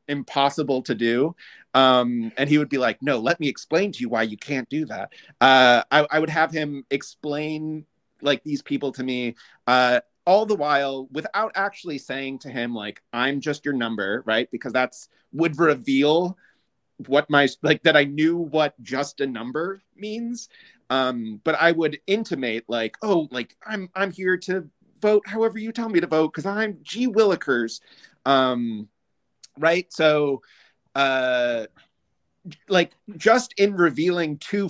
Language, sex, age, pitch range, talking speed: English, male, 30-49, 125-165 Hz, 165 wpm